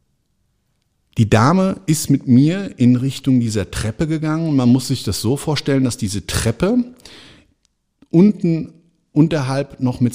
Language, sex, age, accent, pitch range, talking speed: German, male, 50-69, German, 105-145 Hz, 135 wpm